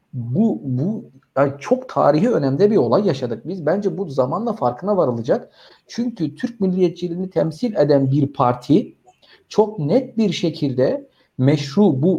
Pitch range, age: 135-205 Hz, 50-69